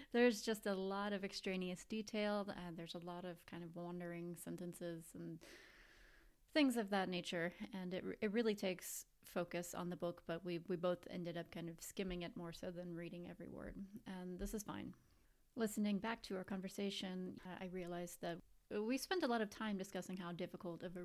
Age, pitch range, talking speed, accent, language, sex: 30-49, 175-200 Hz, 195 wpm, American, English, female